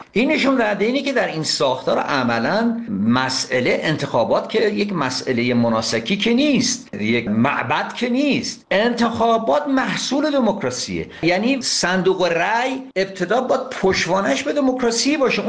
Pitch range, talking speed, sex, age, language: 165-245 Hz, 125 wpm, male, 50-69, Persian